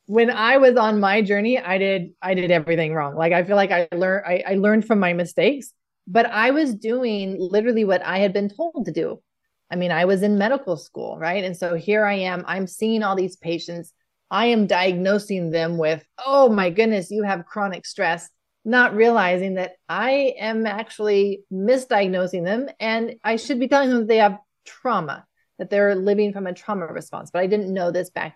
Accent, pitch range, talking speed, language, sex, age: American, 180-220 Hz, 205 wpm, English, female, 30-49